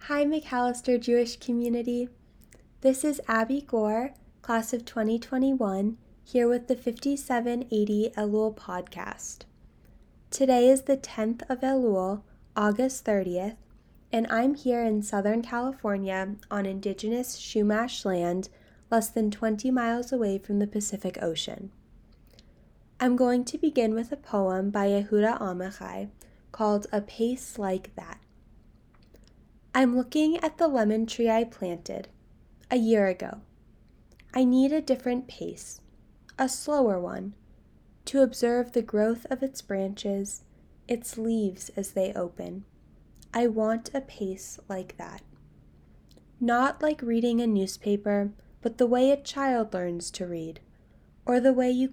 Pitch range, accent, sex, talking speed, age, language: 200-250 Hz, American, female, 130 wpm, 10-29, English